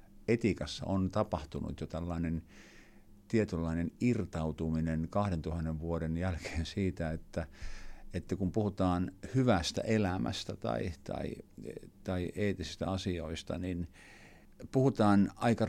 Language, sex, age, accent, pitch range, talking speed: Finnish, male, 50-69, native, 85-100 Hz, 95 wpm